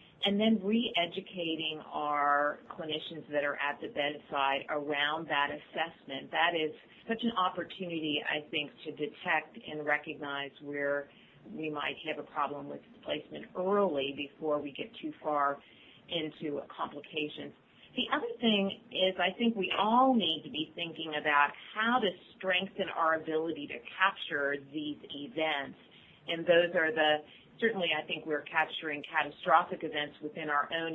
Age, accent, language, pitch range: 40-59, American, English, 145-175 Hz